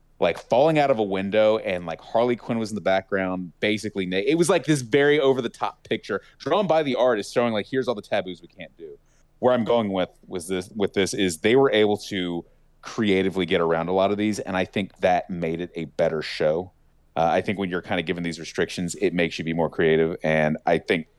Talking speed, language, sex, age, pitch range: 240 wpm, English, male, 30-49, 80-110 Hz